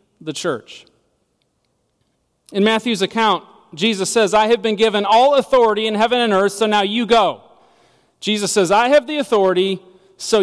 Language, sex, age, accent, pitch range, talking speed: English, male, 40-59, American, 185-240 Hz, 160 wpm